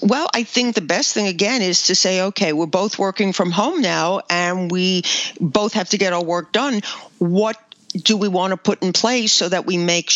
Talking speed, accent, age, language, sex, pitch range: 225 wpm, American, 50-69, English, female, 165-210 Hz